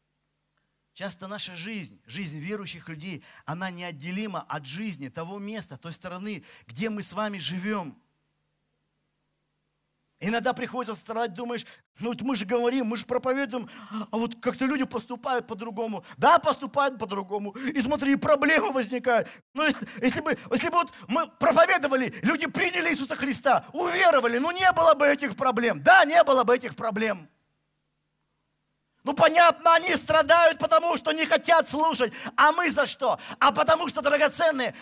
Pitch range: 215-310 Hz